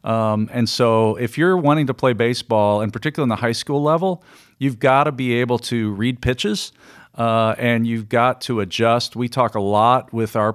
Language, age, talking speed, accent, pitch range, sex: English, 40-59, 205 wpm, American, 115-150 Hz, male